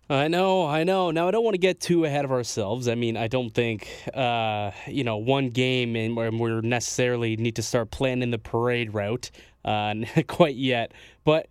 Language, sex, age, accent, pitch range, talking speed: English, male, 20-39, American, 115-140 Hz, 205 wpm